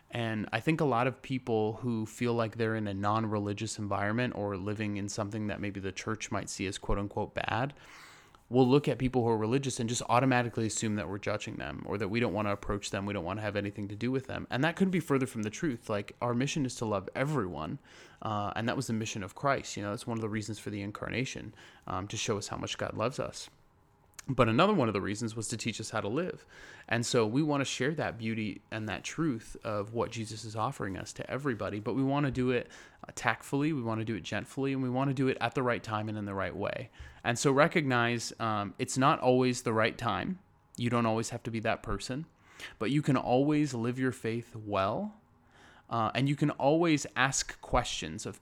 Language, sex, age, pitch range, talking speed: English, male, 20-39, 105-130 Hz, 245 wpm